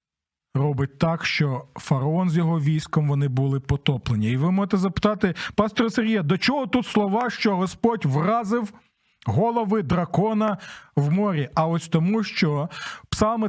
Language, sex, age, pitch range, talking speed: Ukrainian, male, 40-59, 165-210 Hz, 140 wpm